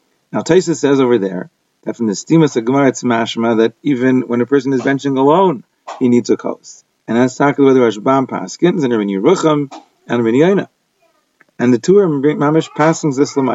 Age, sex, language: 30-49, male, English